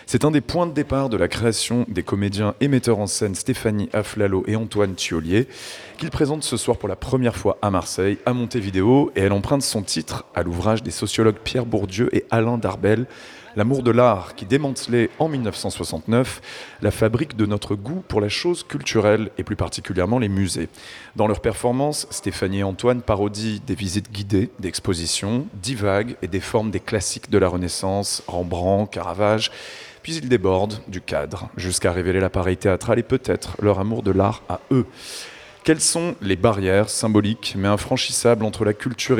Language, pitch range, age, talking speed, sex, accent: French, 100-125 Hz, 30-49, 180 wpm, male, French